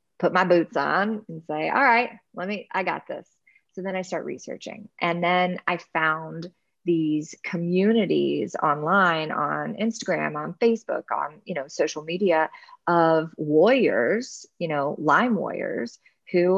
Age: 20-39